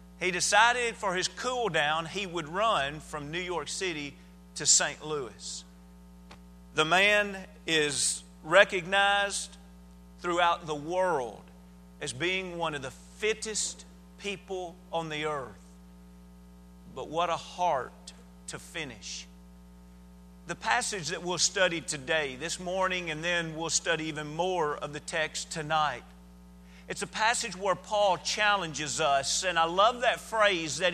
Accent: American